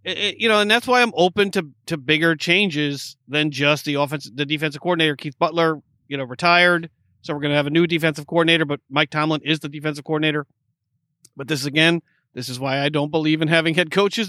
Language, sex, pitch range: English, male, 145-170 Hz